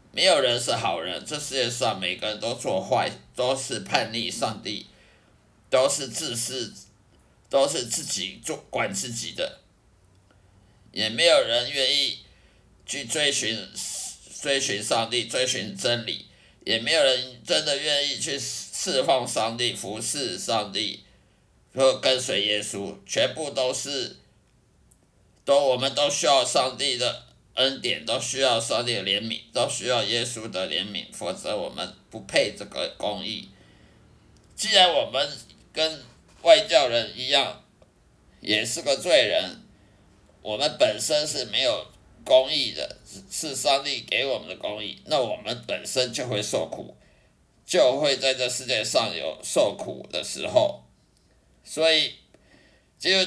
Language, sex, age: Chinese, male, 50-69